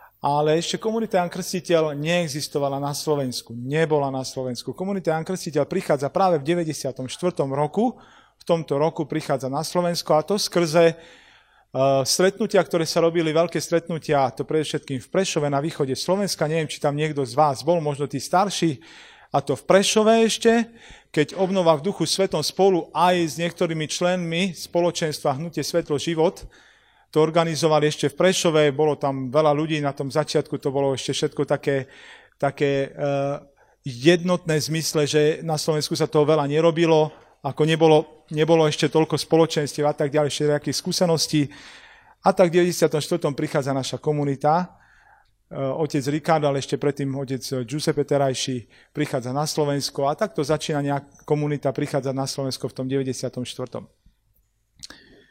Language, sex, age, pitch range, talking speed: Slovak, male, 40-59, 140-170 Hz, 150 wpm